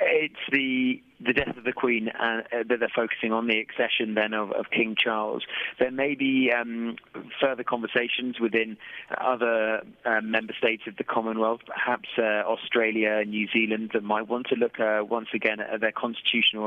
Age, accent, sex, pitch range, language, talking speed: 30-49, British, male, 105-120 Hz, English, 180 wpm